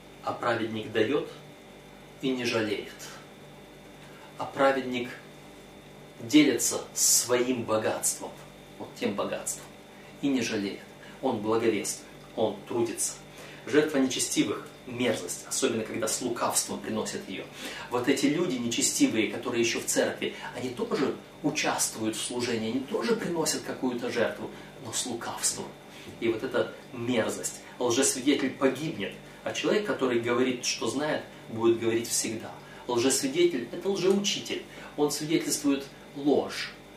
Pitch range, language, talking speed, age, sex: 125-180 Hz, Russian, 120 wpm, 30-49, male